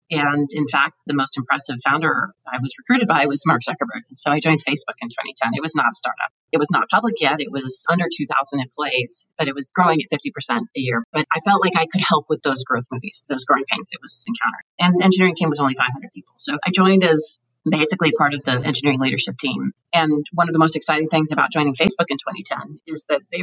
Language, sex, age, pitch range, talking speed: English, female, 30-49, 145-180 Hz, 240 wpm